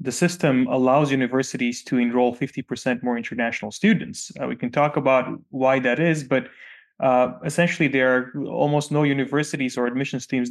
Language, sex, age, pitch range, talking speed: English, male, 20-39, 120-145 Hz, 165 wpm